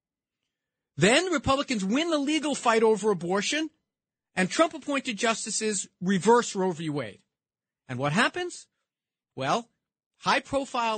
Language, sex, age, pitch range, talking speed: English, male, 40-59, 150-230 Hz, 110 wpm